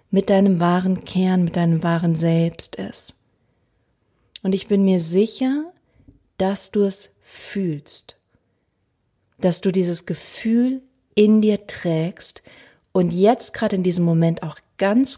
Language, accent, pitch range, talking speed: German, German, 165-205 Hz, 130 wpm